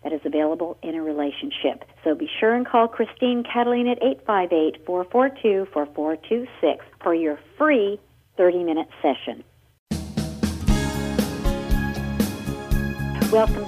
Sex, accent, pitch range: female, American, 150-195 Hz